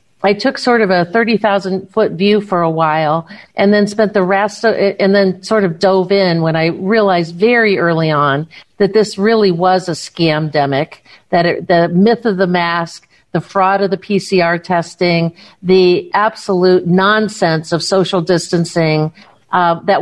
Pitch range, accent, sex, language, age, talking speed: 170-200 Hz, American, female, English, 50-69, 170 wpm